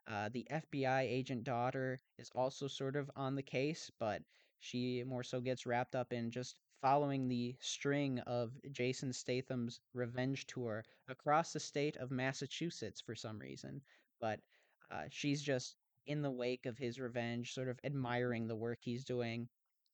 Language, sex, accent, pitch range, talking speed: English, male, American, 120-135 Hz, 165 wpm